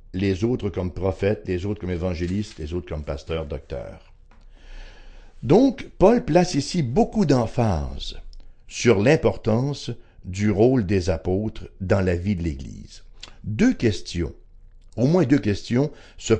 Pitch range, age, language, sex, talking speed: 90-135 Hz, 60-79, English, male, 135 wpm